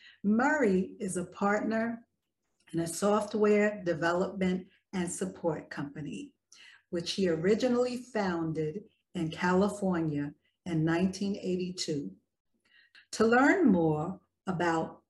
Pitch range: 160-200 Hz